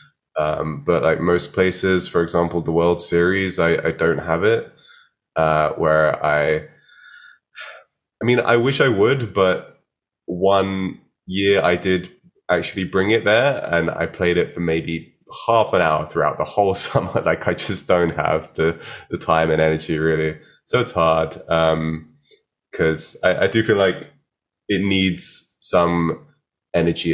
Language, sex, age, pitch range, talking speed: Slovak, male, 20-39, 80-95 Hz, 155 wpm